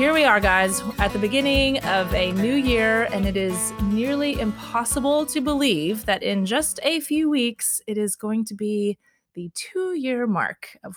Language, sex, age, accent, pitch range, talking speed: English, female, 20-39, American, 190-245 Hz, 185 wpm